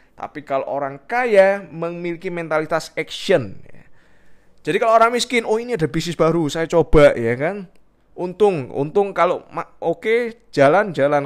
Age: 20-39